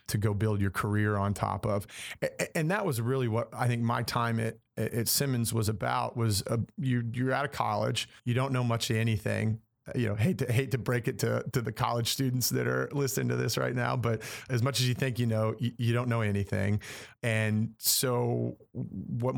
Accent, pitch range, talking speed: American, 110-125 Hz, 220 wpm